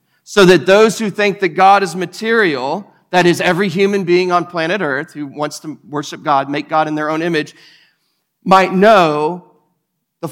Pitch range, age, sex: 165-210 Hz, 40-59, male